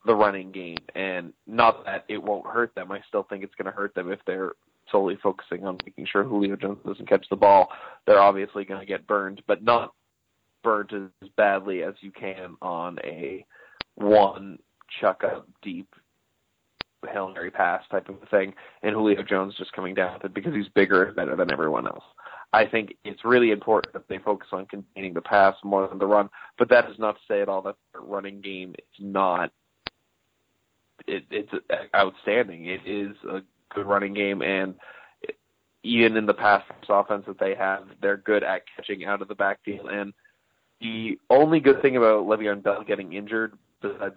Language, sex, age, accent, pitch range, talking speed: English, male, 20-39, American, 95-105 Hz, 190 wpm